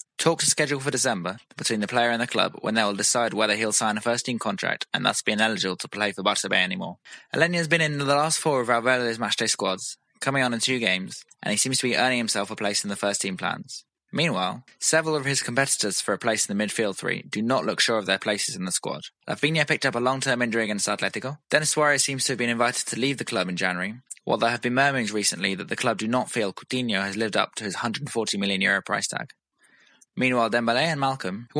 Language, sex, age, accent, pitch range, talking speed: English, male, 20-39, British, 105-140 Hz, 245 wpm